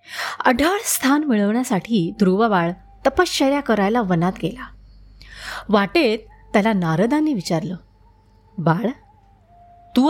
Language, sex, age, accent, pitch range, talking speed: Marathi, female, 30-49, native, 170-275 Hz, 75 wpm